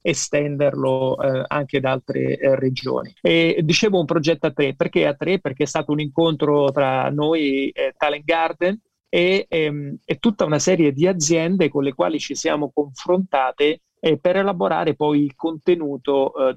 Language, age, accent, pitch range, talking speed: Italian, 30-49, native, 135-155 Hz, 170 wpm